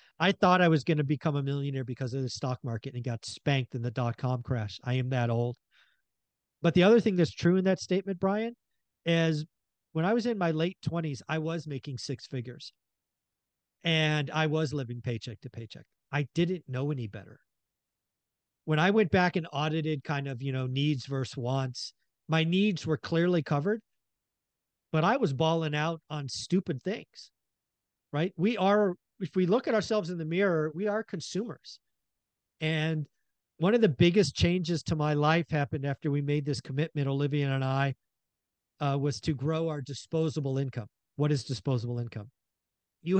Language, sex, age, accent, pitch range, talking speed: English, male, 40-59, American, 135-180 Hz, 180 wpm